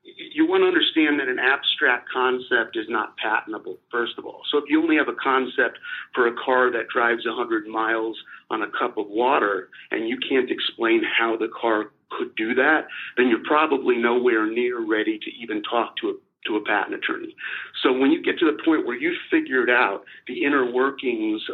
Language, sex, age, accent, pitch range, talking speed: English, male, 50-69, American, 310-370 Hz, 200 wpm